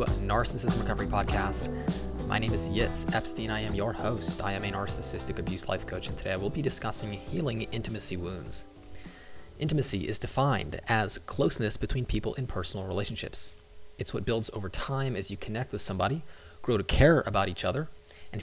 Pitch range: 95-120 Hz